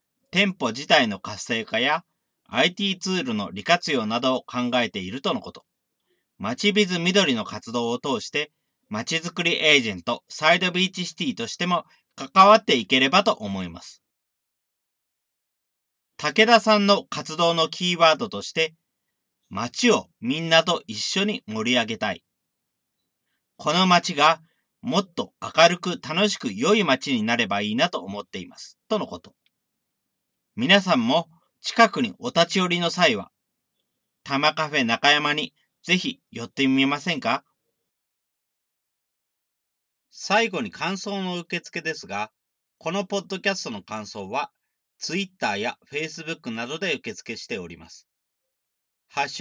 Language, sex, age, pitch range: Japanese, male, 40-59, 150-210 Hz